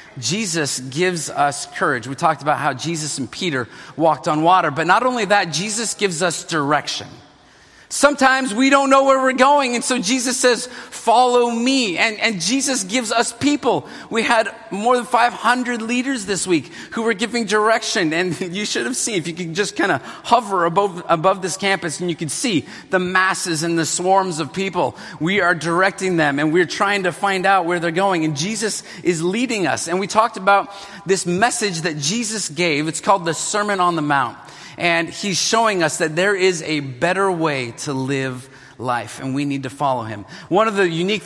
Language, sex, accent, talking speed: English, male, American, 200 wpm